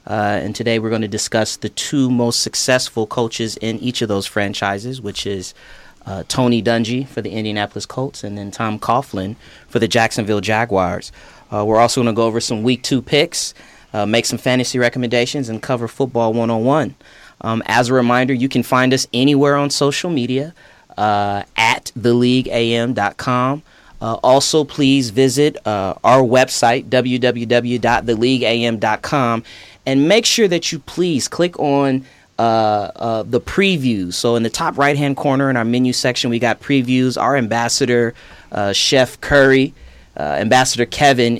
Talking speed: 160 wpm